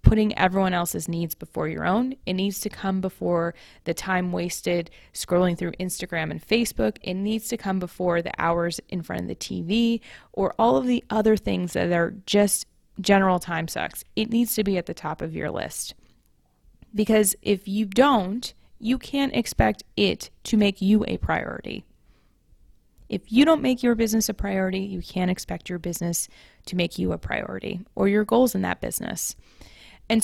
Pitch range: 180-220 Hz